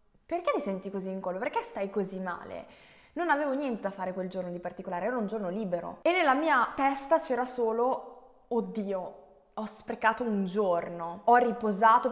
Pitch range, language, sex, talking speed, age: 195-245 Hz, Italian, female, 180 wpm, 20-39